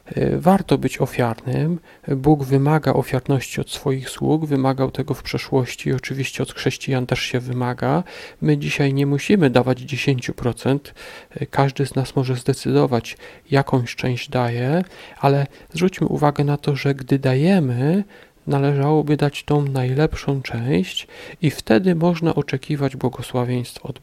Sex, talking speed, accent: male, 130 wpm, native